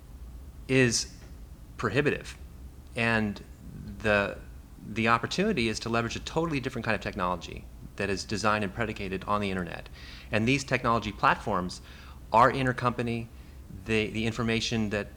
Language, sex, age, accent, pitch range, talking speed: English, male, 30-49, American, 90-120 Hz, 125 wpm